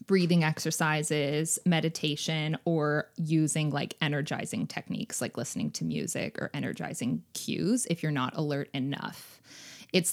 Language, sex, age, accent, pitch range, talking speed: English, female, 20-39, American, 155-185 Hz, 125 wpm